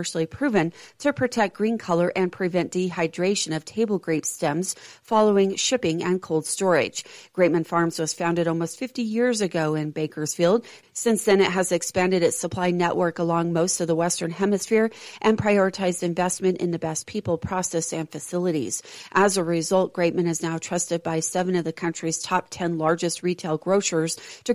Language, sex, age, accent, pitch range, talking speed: English, female, 40-59, American, 165-195 Hz, 170 wpm